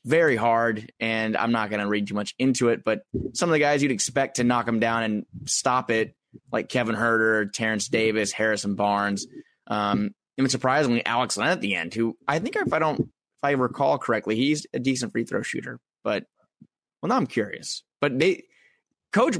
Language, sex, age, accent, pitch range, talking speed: English, male, 20-39, American, 110-130 Hz, 200 wpm